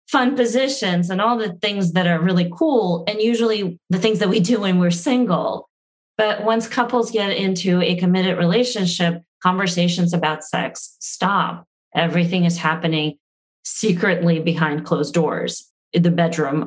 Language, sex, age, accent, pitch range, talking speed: English, female, 30-49, American, 165-190 Hz, 150 wpm